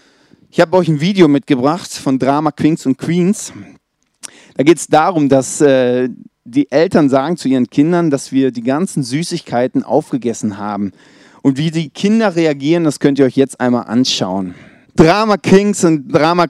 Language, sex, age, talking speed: German, male, 30-49, 165 wpm